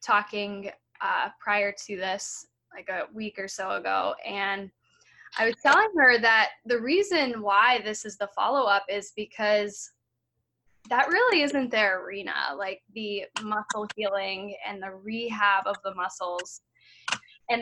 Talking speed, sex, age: 145 wpm, female, 10-29